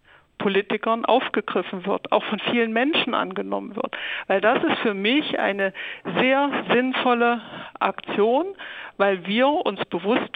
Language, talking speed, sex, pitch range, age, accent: German, 125 wpm, female, 200-255 Hz, 60-79, German